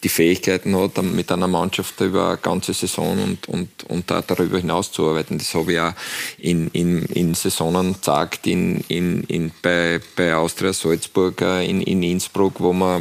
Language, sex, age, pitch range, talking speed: German, male, 20-39, 90-100 Hz, 175 wpm